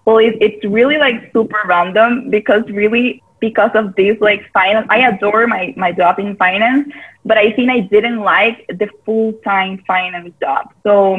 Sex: female